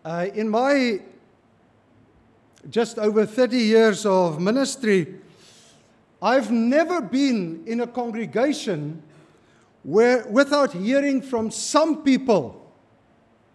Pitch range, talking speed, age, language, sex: 160-260 Hz, 95 wpm, 50-69, Italian, male